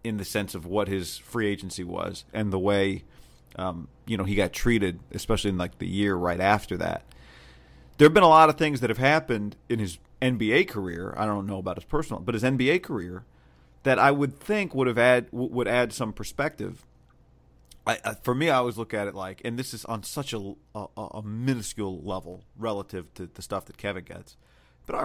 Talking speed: 215 wpm